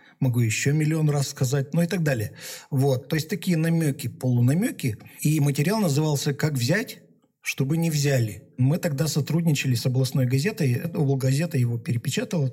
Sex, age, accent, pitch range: male, 50-69, native, 125-160 Hz